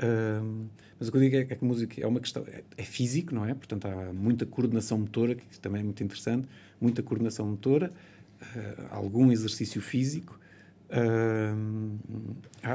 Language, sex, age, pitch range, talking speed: Portuguese, male, 50-69, 100-120 Hz, 170 wpm